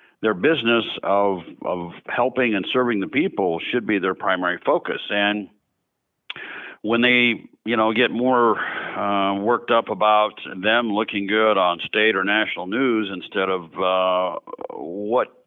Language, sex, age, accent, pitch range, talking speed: English, male, 60-79, American, 100-125 Hz, 145 wpm